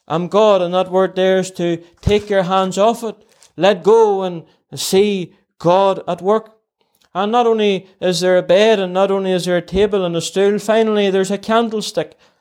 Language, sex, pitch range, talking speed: English, male, 185-210 Hz, 200 wpm